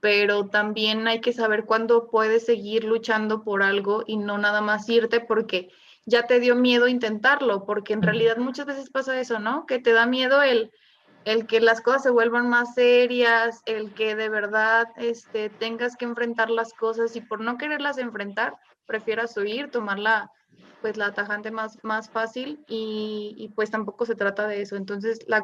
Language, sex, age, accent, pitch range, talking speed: Spanish, female, 20-39, Mexican, 215-260 Hz, 185 wpm